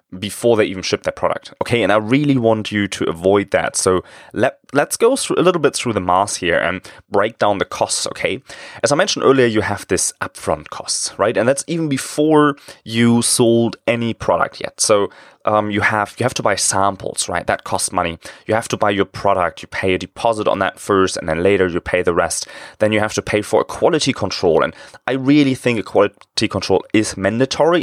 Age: 20-39